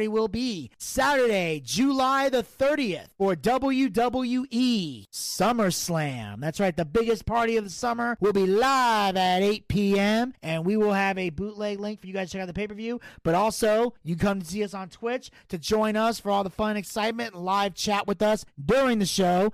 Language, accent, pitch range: English, American, 180-220 Hz